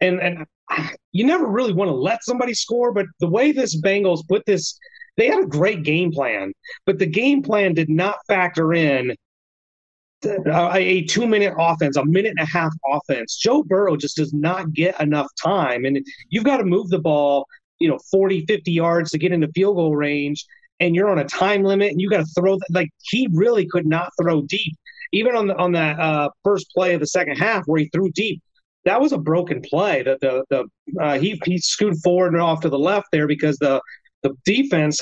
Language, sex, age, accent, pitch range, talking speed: English, male, 30-49, American, 155-200 Hz, 220 wpm